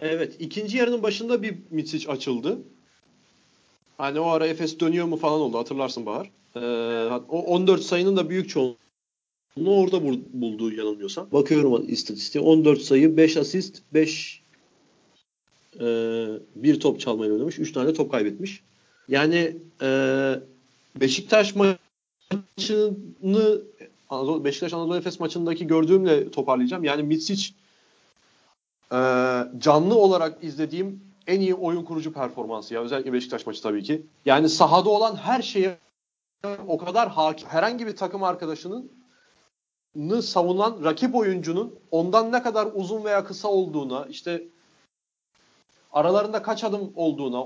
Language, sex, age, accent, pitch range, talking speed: Turkish, male, 40-59, native, 135-195 Hz, 125 wpm